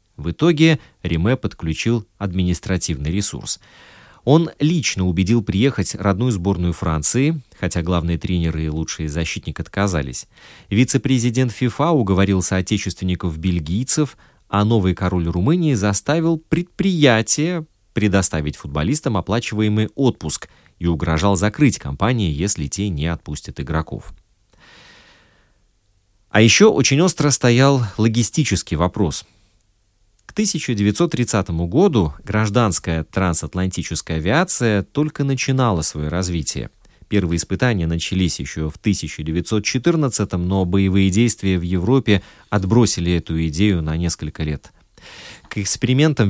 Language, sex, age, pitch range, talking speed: Russian, male, 30-49, 85-120 Hz, 105 wpm